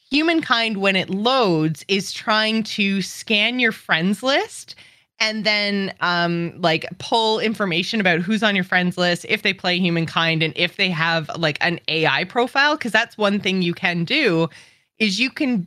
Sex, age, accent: female, 20-39, American